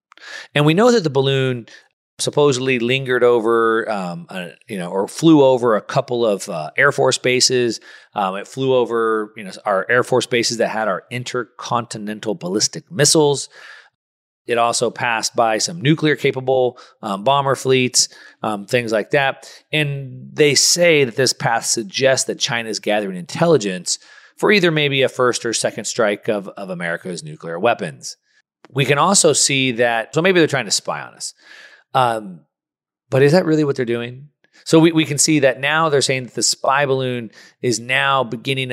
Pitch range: 120-140 Hz